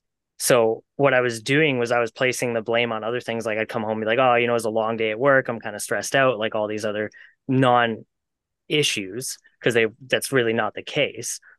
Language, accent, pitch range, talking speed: English, American, 110-130 Hz, 250 wpm